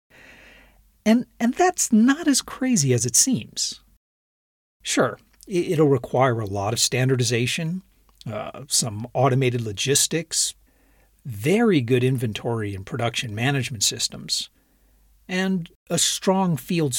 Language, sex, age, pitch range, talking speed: English, male, 50-69, 125-190 Hz, 110 wpm